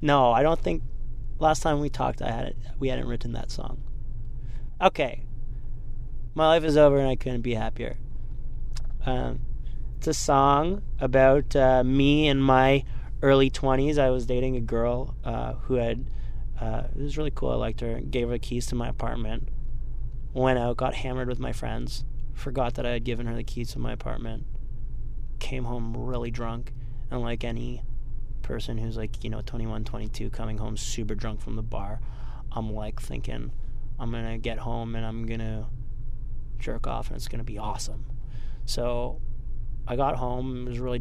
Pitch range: 115-130 Hz